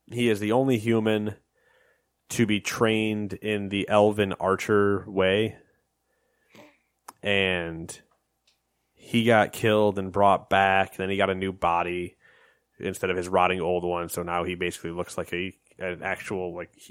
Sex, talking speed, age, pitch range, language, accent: male, 150 wpm, 20-39, 95-120 Hz, English, American